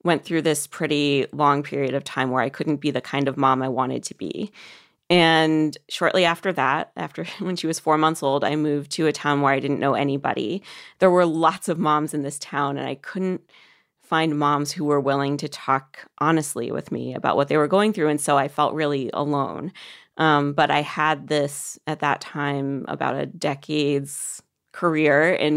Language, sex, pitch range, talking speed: English, female, 140-160 Hz, 205 wpm